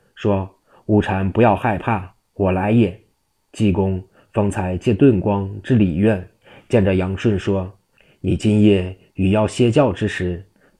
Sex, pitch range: male, 95-110 Hz